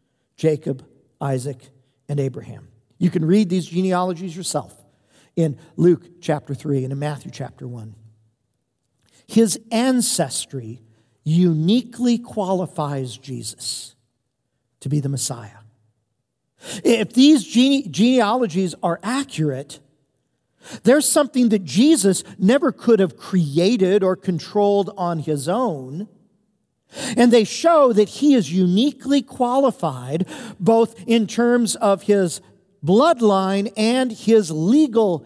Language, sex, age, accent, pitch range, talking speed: English, male, 50-69, American, 130-205 Hz, 105 wpm